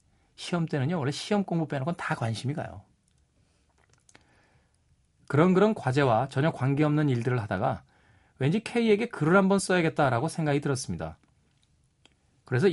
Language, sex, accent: Korean, male, native